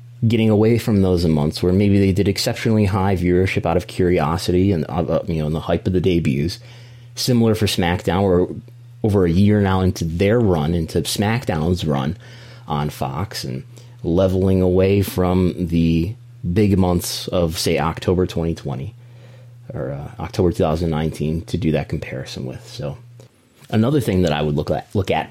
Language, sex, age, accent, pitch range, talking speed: English, male, 30-49, American, 85-115 Hz, 165 wpm